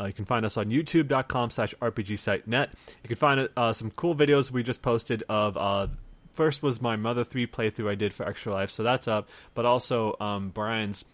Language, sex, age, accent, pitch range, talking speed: English, male, 30-49, American, 100-120 Hz, 220 wpm